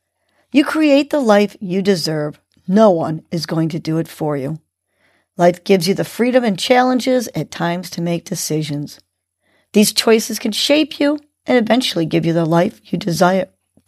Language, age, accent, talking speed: English, 50-69, American, 175 wpm